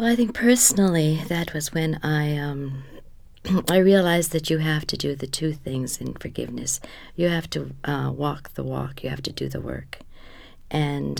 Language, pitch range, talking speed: English, 125-160 Hz, 190 wpm